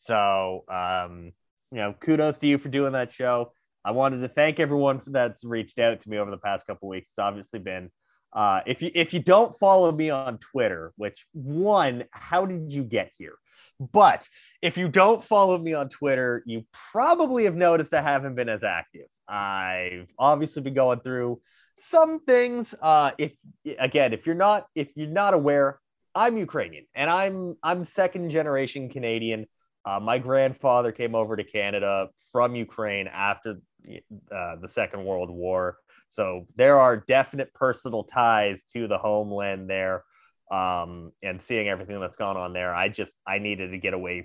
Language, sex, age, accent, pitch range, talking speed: English, male, 30-49, American, 100-145 Hz, 175 wpm